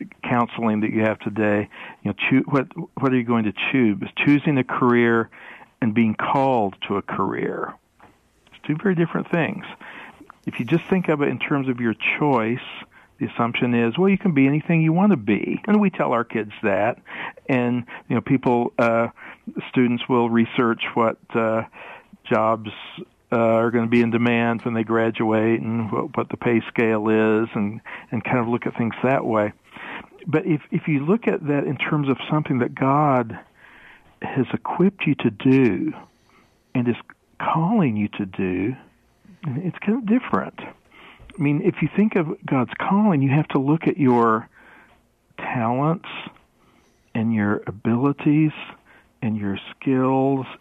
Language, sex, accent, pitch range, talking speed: English, male, American, 115-150 Hz, 170 wpm